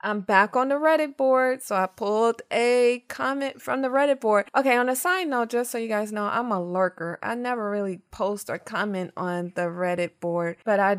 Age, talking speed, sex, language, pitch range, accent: 20-39, 220 wpm, female, English, 190-235 Hz, American